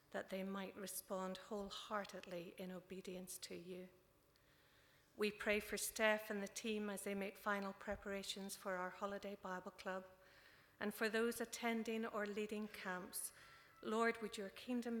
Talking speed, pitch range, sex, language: 150 wpm, 185-215 Hz, female, English